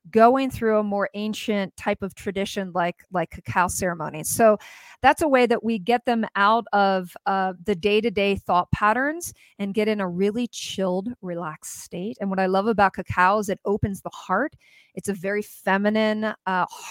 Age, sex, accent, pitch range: 40-59, female, American, 195-235 Hz